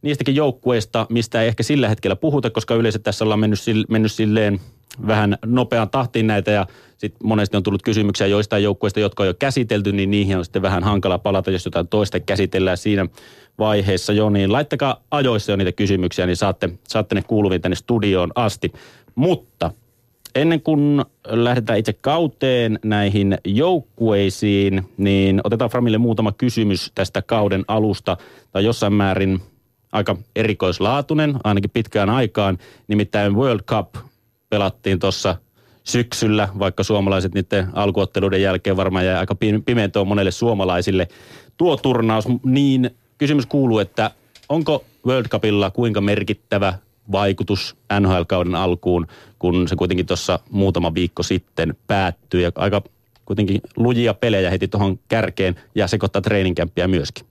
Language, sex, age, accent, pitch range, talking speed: Finnish, male, 30-49, native, 95-115 Hz, 140 wpm